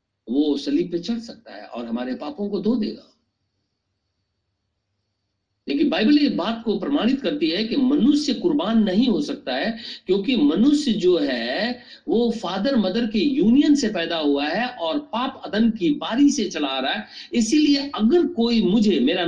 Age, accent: 50-69, native